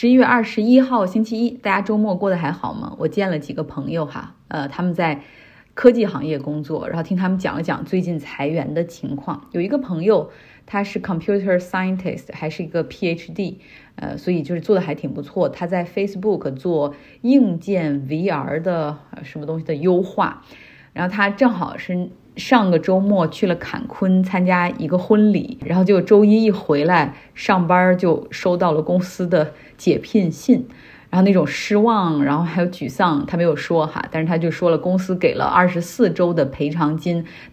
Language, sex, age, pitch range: Chinese, female, 20-39, 160-200 Hz